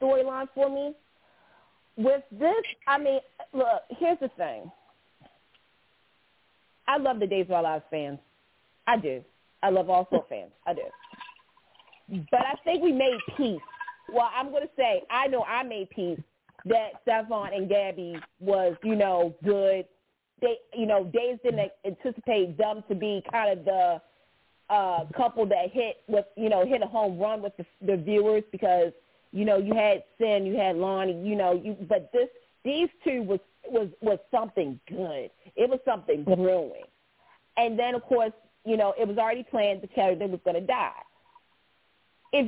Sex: female